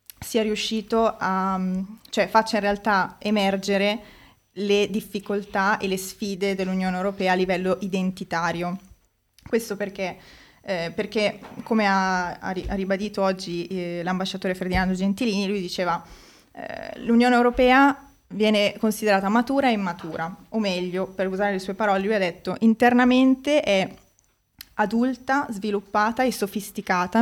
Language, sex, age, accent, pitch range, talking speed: Italian, female, 20-39, native, 185-215 Hz, 125 wpm